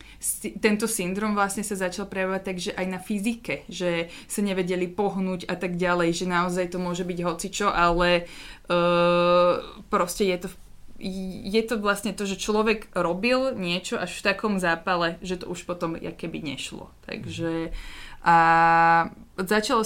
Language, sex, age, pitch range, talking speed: Slovak, female, 20-39, 175-200 Hz, 145 wpm